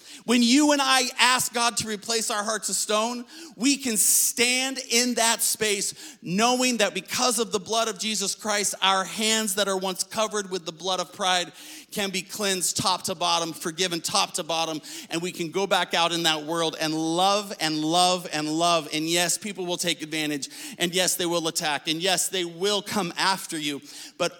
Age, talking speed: 40-59, 200 wpm